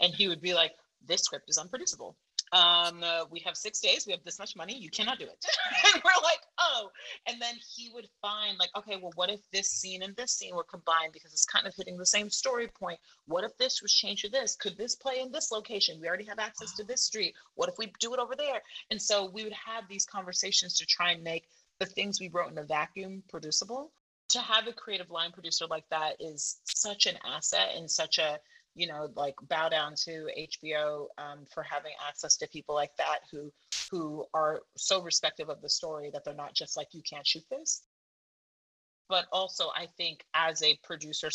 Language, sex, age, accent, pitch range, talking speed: English, female, 30-49, American, 155-210 Hz, 225 wpm